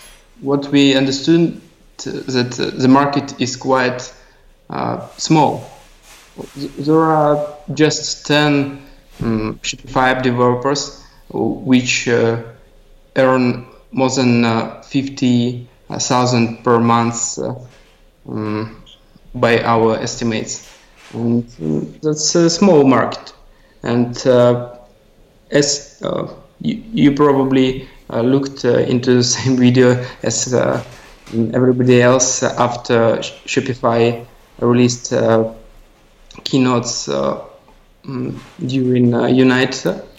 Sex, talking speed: male, 100 wpm